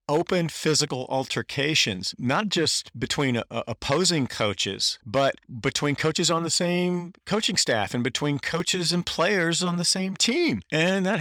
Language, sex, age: English, male, 40-59